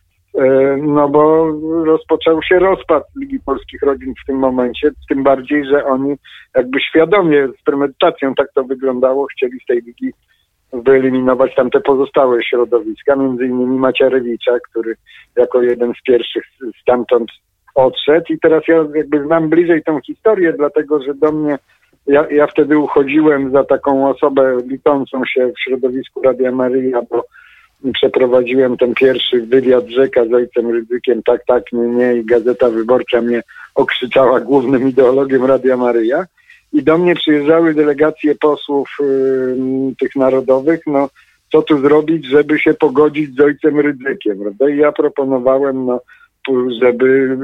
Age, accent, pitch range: 50-69, native, 125-150 Hz